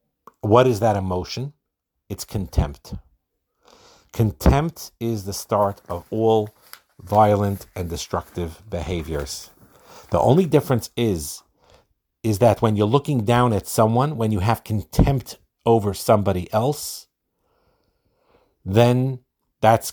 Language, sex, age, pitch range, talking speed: English, male, 50-69, 95-115 Hz, 110 wpm